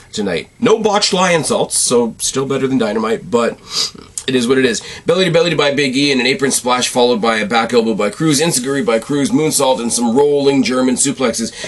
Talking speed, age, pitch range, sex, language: 220 wpm, 30-49, 120-195 Hz, male, English